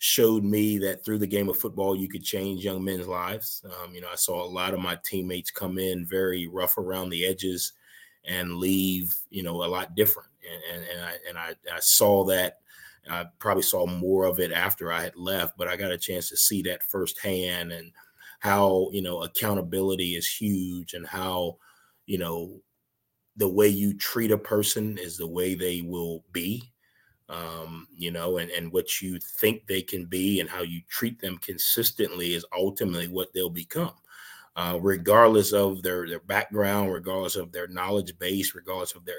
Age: 30-49